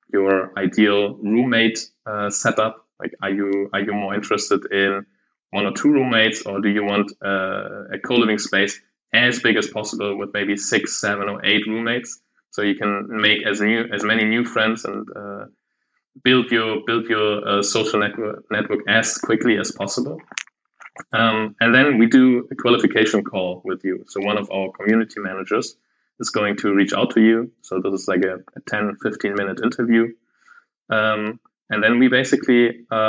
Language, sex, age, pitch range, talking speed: English, male, 20-39, 100-115 Hz, 175 wpm